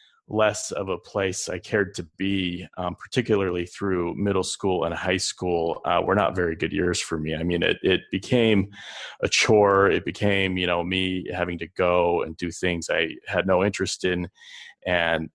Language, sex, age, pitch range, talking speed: English, male, 20-39, 85-100 Hz, 190 wpm